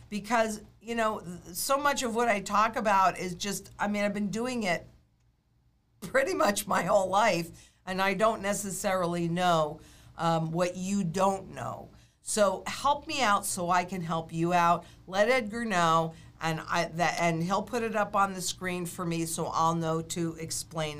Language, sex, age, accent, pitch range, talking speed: English, female, 50-69, American, 155-200 Hz, 175 wpm